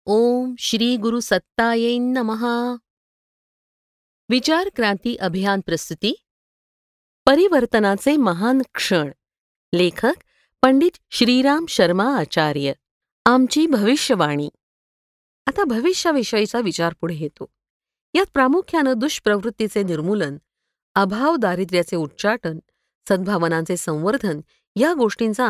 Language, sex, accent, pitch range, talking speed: Marathi, female, native, 175-255 Hz, 60 wpm